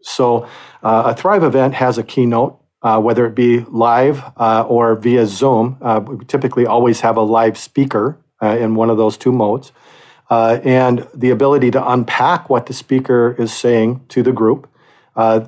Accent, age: American, 40-59